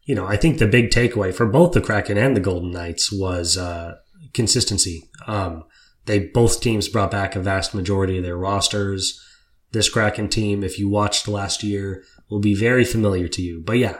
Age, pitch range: 20-39, 95-105 Hz